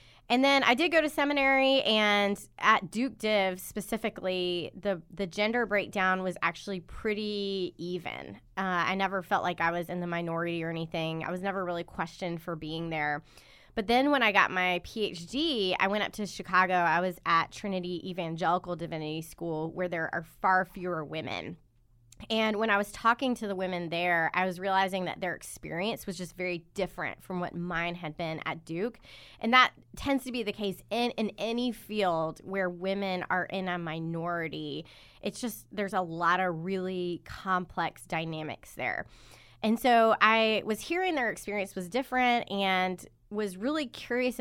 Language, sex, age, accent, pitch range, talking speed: English, female, 20-39, American, 170-210 Hz, 175 wpm